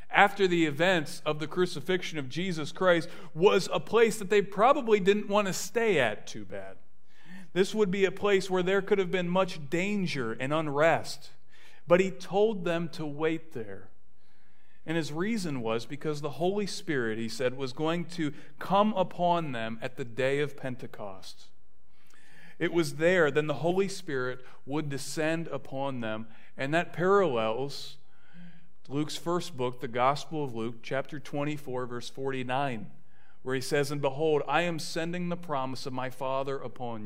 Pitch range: 125-175 Hz